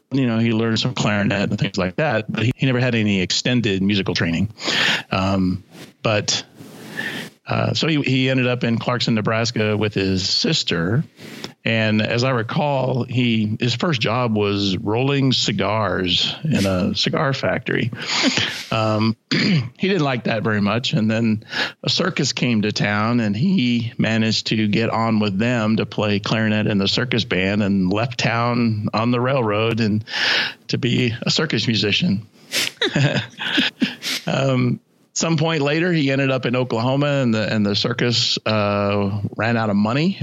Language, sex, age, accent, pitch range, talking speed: English, male, 40-59, American, 110-130 Hz, 160 wpm